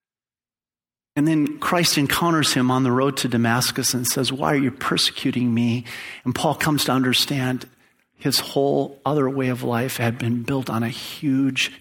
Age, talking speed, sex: 40-59, 175 wpm, male